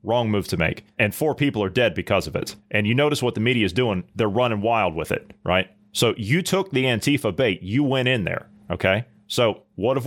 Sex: male